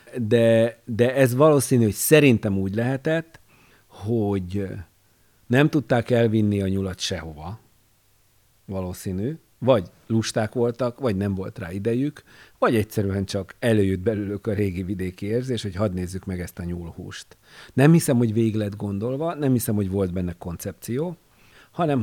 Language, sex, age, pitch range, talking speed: Hungarian, male, 50-69, 100-125 Hz, 145 wpm